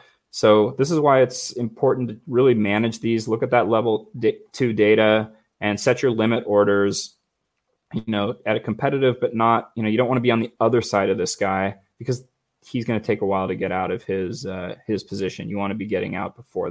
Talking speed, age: 235 wpm, 20-39